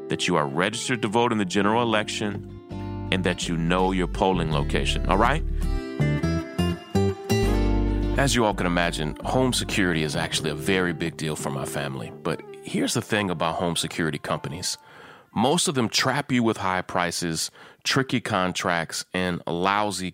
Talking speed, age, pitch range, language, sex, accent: 165 wpm, 30-49, 85-110 Hz, English, male, American